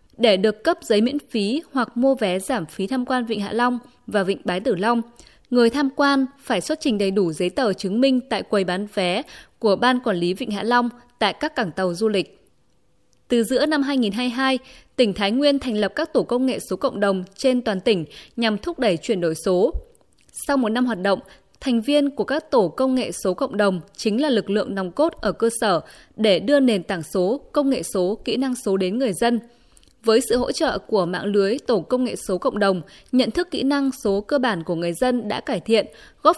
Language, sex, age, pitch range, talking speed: Vietnamese, female, 20-39, 200-265 Hz, 230 wpm